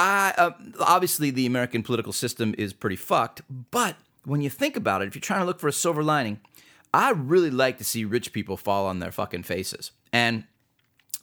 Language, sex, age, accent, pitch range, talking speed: English, male, 30-49, American, 105-145 Hz, 205 wpm